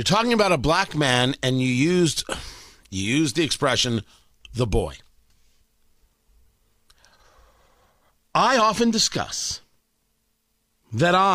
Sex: male